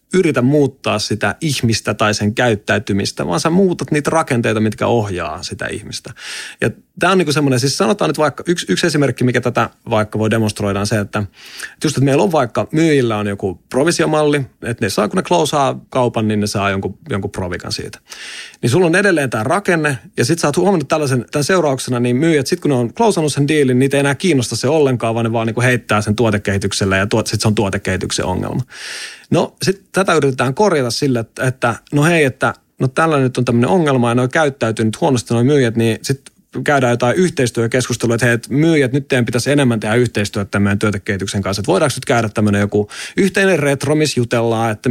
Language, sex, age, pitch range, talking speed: English, male, 30-49, 110-150 Hz, 195 wpm